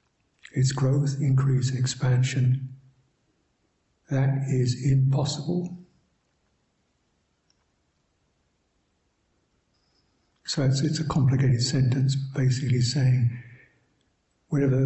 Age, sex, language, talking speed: 60-79, male, English, 70 wpm